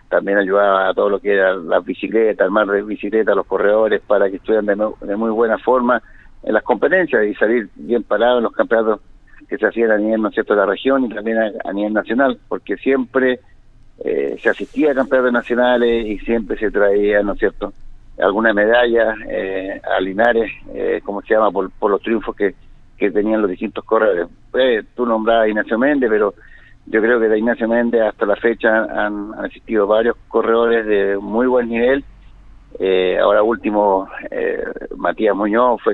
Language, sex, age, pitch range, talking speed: Spanish, male, 50-69, 105-125 Hz, 190 wpm